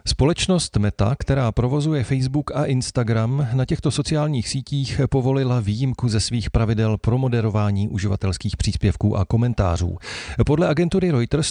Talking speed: 130 wpm